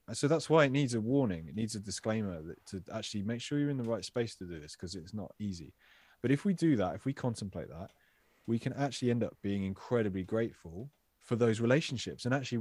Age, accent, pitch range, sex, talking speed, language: 20-39, British, 95-120 Hz, male, 235 wpm, English